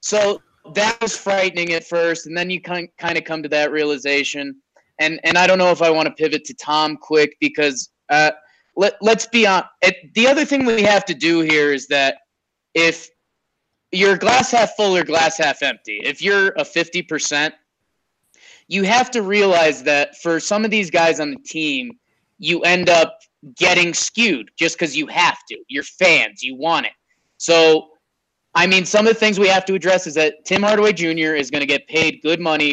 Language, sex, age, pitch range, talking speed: English, male, 20-39, 150-195 Hz, 200 wpm